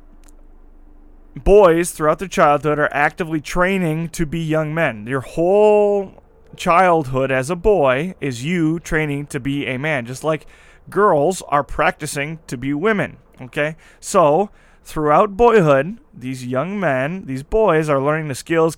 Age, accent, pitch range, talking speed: 20-39, American, 135-175 Hz, 145 wpm